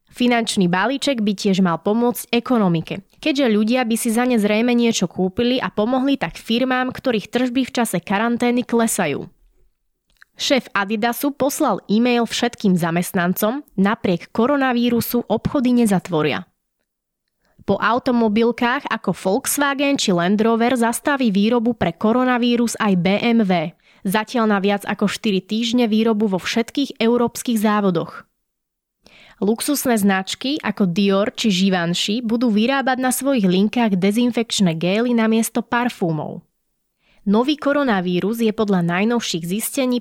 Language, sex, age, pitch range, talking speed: Slovak, female, 20-39, 195-240 Hz, 120 wpm